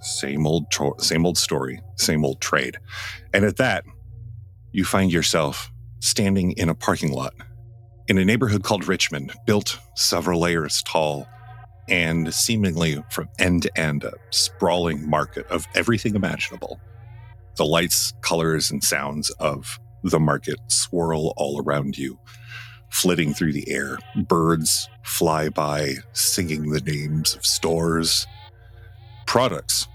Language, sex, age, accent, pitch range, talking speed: English, male, 40-59, American, 85-115 Hz, 130 wpm